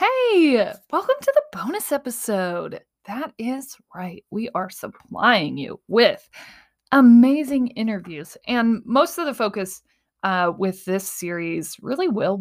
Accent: American